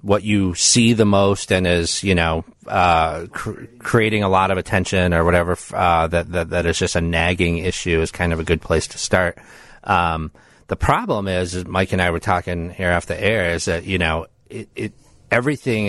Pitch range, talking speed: 85-100 Hz, 210 wpm